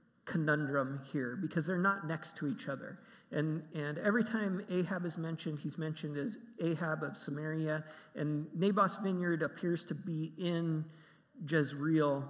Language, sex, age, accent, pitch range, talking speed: English, male, 40-59, American, 150-195 Hz, 145 wpm